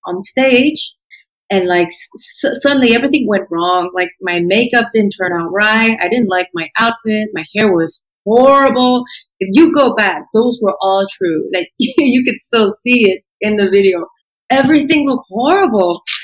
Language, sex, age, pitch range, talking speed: English, female, 30-49, 190-245 Hz, 165 wpm